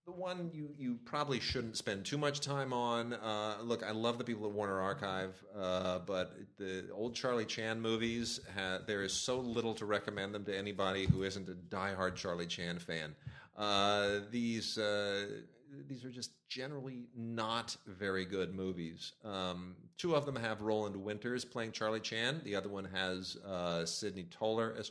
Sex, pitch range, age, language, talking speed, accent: male, 95-120 Hz, 40-59, English, 170 wpm, American